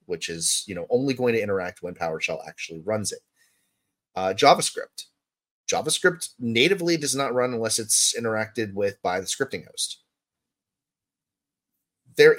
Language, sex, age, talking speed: English, male, 30-49, 140 wpm